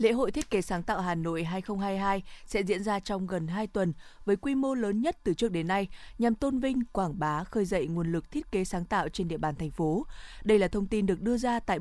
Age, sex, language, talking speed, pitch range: 20-39, female, Vietnamese, 260 wpm, 175-220 Hz